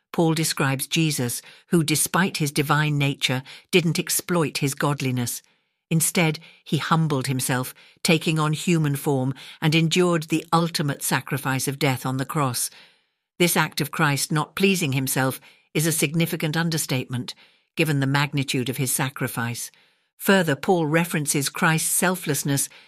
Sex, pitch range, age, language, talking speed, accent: female, 140-170 Hz, 60-79, English, 135 wpm, British